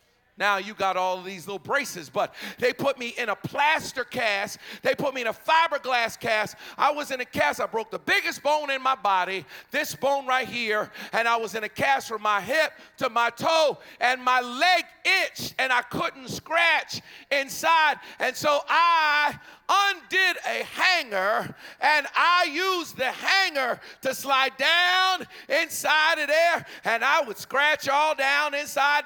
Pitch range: 250-320 Hz